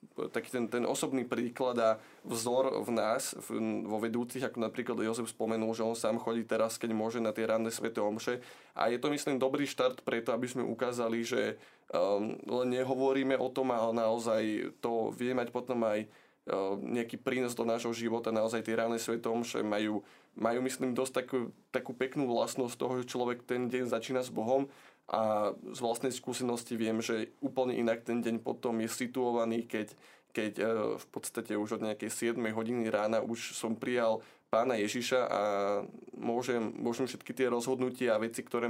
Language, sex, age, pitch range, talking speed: Slovak, male, 20-39, 110-125 Hz, 180 wpm